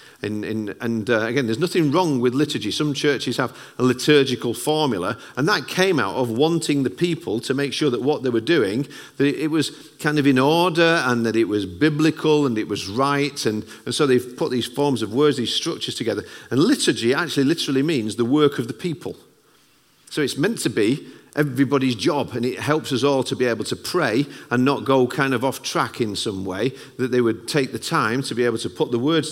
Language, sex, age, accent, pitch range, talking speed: English, male, 40-59, British, 115-145 Hz, 220 wpm